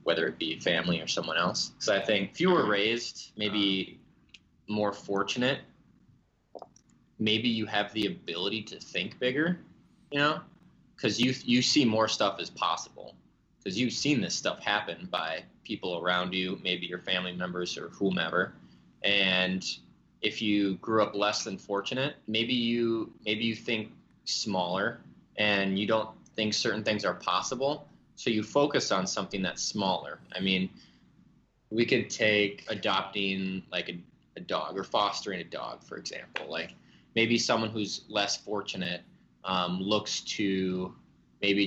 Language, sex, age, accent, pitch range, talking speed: English, male, 20-39, American, 95-110 Hz, 155 wpm